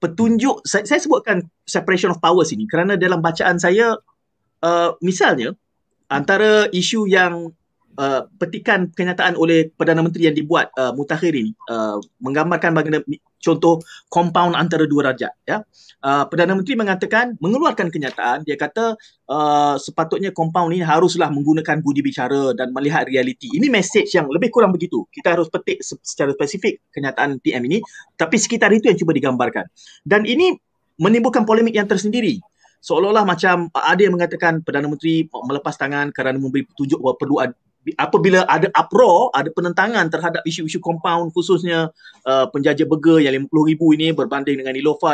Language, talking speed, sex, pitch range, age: Malay, 155 wpm, male, 155-205 Hz, 30-49